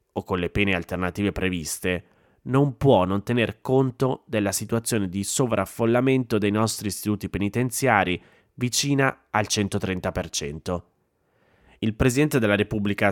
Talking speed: 120 wpm